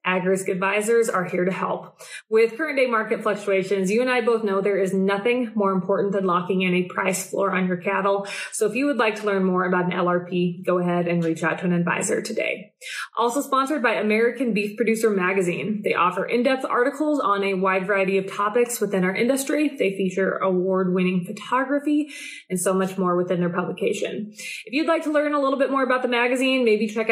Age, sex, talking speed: 20-39, female, 210 wpm